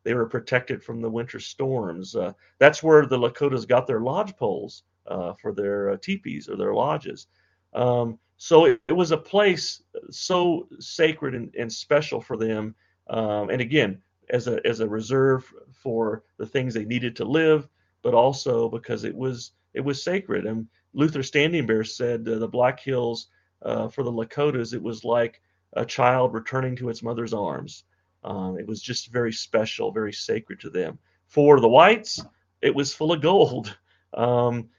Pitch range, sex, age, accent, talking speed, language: 110-140 Hz, male, 40-59, American, 175 wpm, English